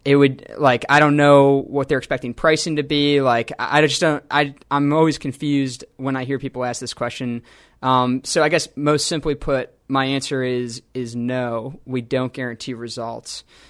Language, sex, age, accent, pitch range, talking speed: English, male, 20-39, American, 125-140 Hz, 190 wpm